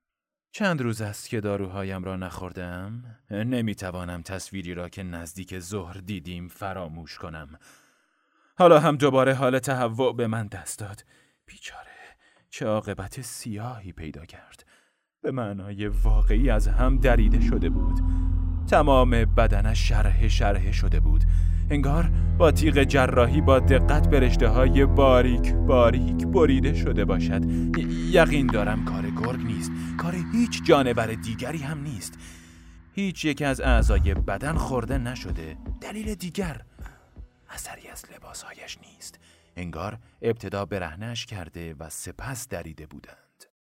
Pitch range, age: 85-115 Hz, 30-49